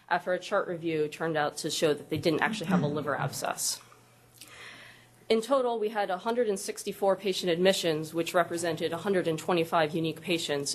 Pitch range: 155-185 Hz